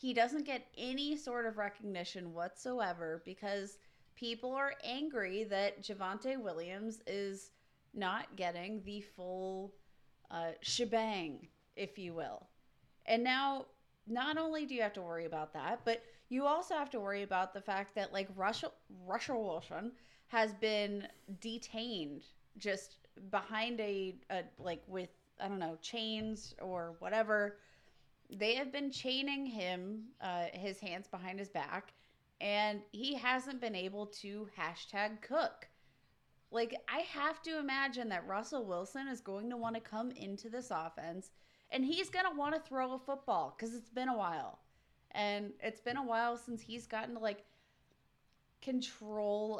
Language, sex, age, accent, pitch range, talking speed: English, female, 30-49, American, 195-245 Hz, 150 wpm